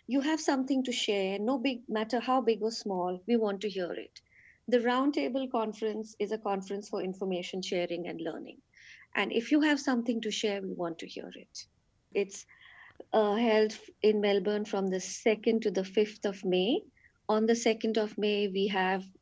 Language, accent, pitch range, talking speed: English, Indian, 195-240 Hz, 185 wpm